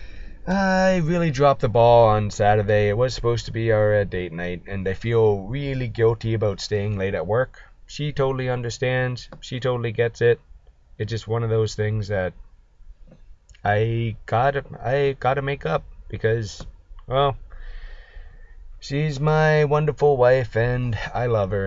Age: 20-39